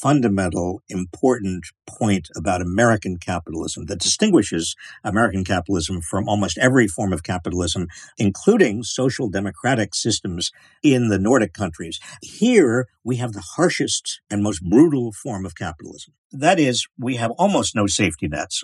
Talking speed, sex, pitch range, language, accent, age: 140 wpm, male, 100-140 Hz, English, American, 50-69